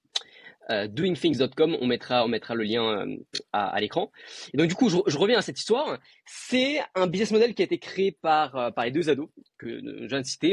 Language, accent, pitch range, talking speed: French, French, 135-225 Hz, 205 wpm